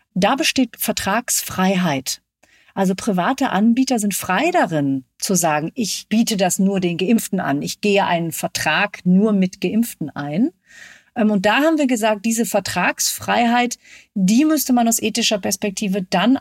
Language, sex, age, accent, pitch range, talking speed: German, female, 40-59, German, 180-225 Hz, 145 wpm